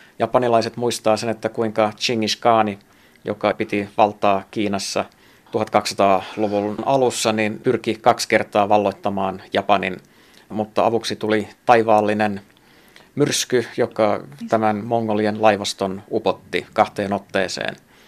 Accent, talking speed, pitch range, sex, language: native, 100 wpm, 100-115 Hz, male, Finnish